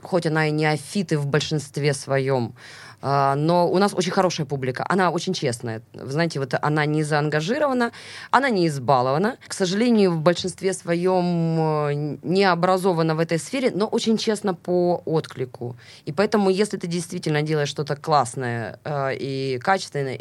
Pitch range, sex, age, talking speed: 120-160 Hz, female, 20-39, 150 wpm